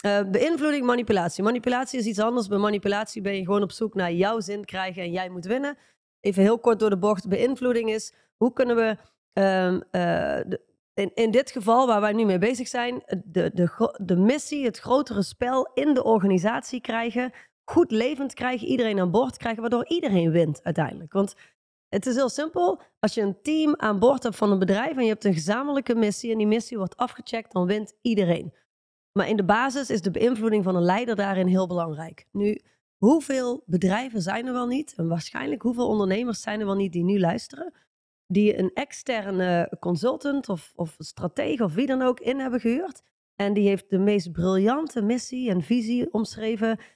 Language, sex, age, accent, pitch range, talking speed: Dutch, female, 30-49, Dutch, 195-245 Hz, 195 wpm